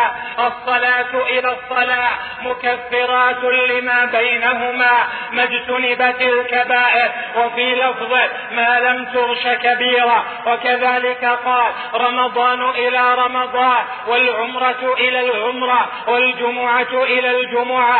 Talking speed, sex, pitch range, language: 85 wpm, male, 245-255 Hz, Arabic